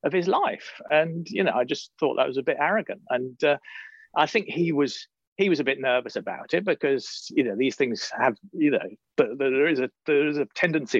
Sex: male